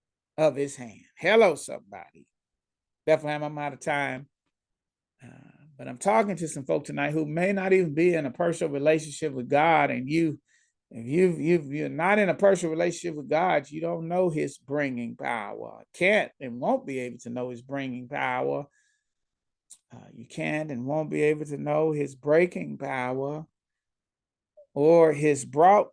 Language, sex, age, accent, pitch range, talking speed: English, male, 40-59, American, 135-165 Hz, 170 wpm